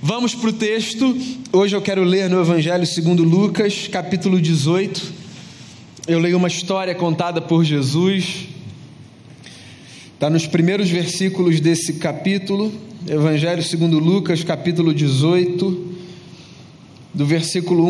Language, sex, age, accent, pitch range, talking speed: Portuguese, male, 20-39, Brazilian, 145-190 Hz, 115 wpm